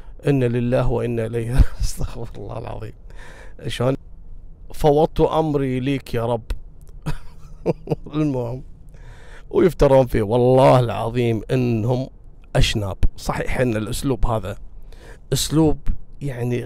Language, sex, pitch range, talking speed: Arabic, male, 115-155 Hz, 95 wpm